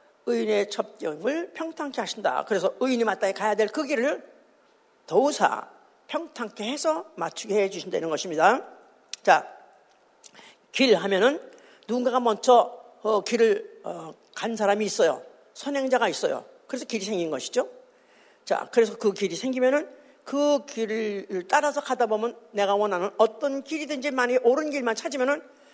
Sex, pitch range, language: female, 190-290 Hz, Korean